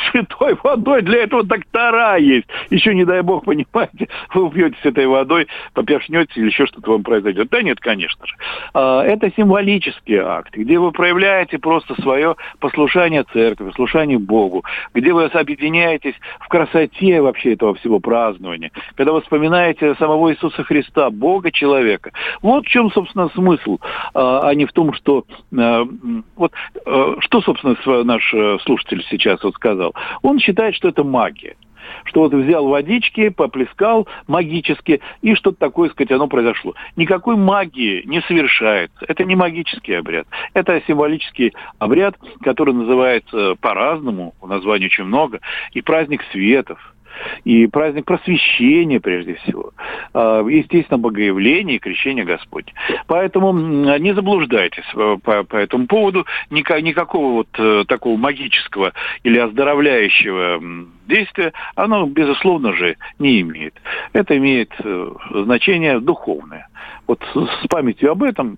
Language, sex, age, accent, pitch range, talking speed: Russian, male, 60-79, native, 125-195 Hz, 130 wpm